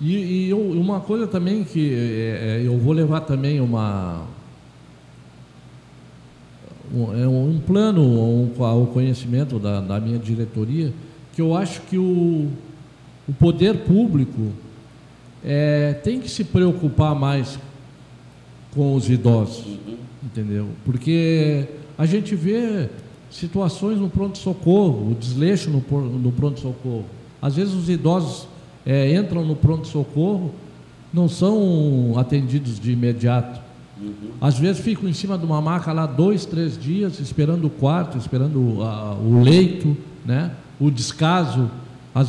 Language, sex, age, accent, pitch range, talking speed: Portuguese, male, 50-69, Brazilian, 125-165 Hz, 125 wpm